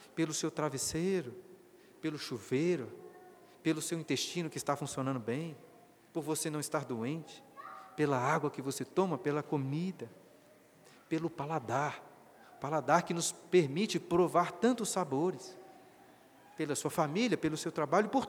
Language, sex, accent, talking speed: Portuguese, male, Brazilian, 130 wpm